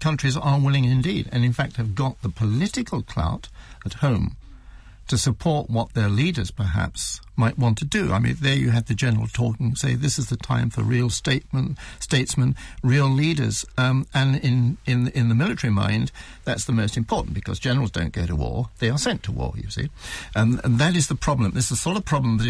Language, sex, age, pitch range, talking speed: English, male, 60-79, 110-140 Hz, 215 wpm